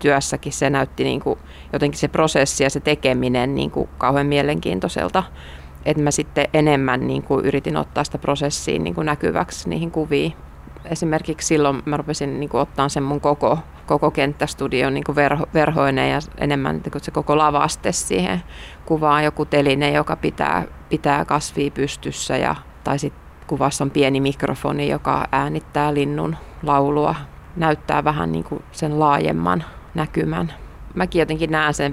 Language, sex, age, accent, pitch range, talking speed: Finnish, female, 30-49, native, 135-155 Hz, 140 wpm